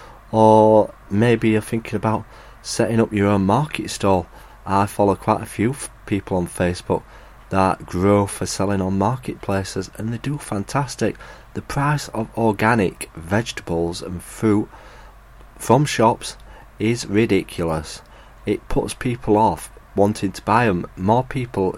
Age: 30-49